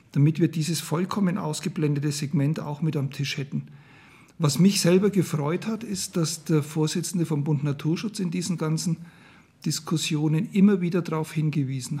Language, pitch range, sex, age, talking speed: German, 145-175 Hz, male, 50-69, 155 wpm